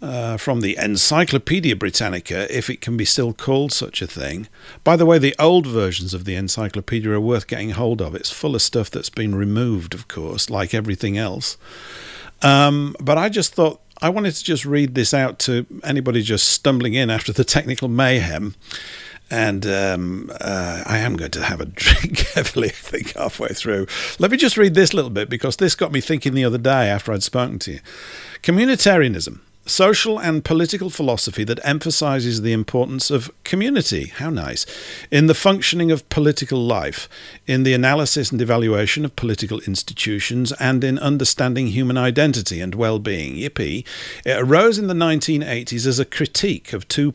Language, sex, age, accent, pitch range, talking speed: English, male, 50-69, British, 105-150 Hz, 180 wpm